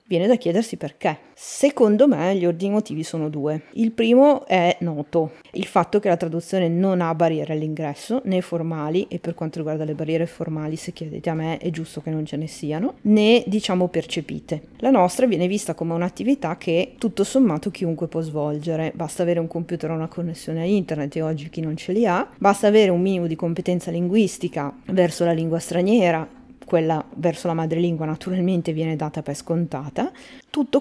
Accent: native